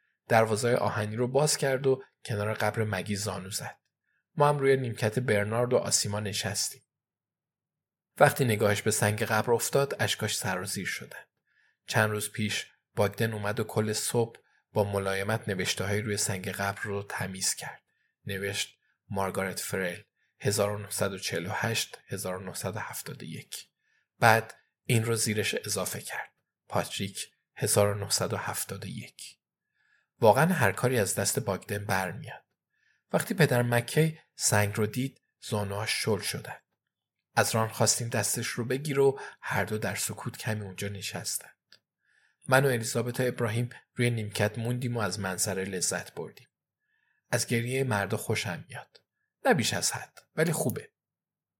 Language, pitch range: Persian, 100-125 Hz